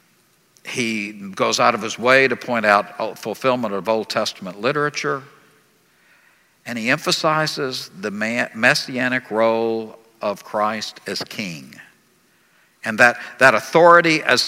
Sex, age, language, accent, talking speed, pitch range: male, 60-79, English, American, 120 wpm, 120-165 Hz